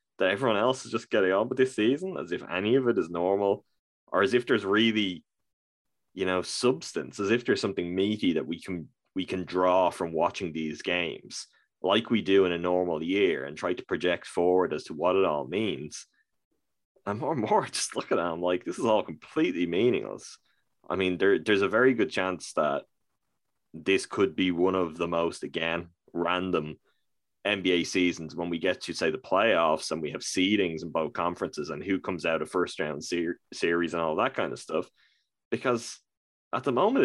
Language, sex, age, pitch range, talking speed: English, male, 20-39, 90-105 Hz, 200 wpm